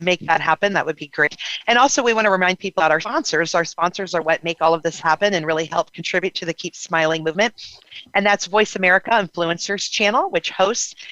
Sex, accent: female, American